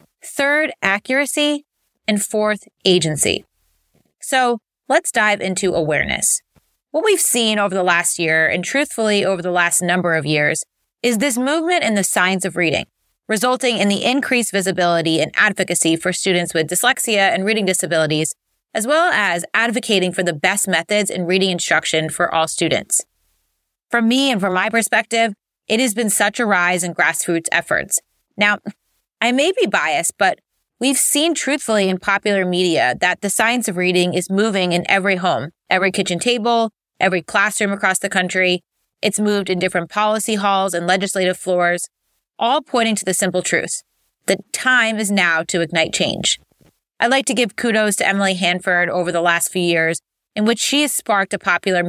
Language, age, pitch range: English, 30-49, 175-225 Hz